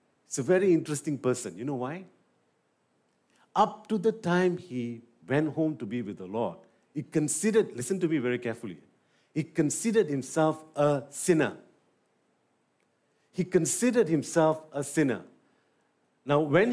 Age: 50-69